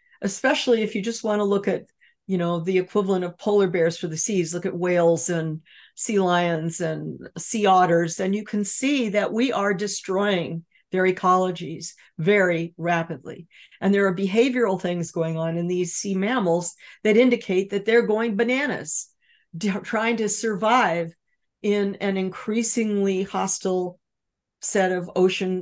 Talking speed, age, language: 155 wpm, 50-69, English